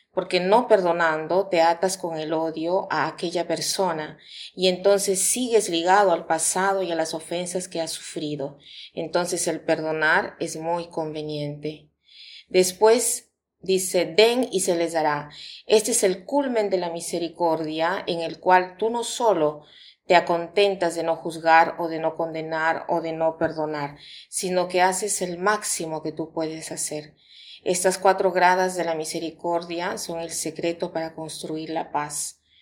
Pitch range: 160-185 Hz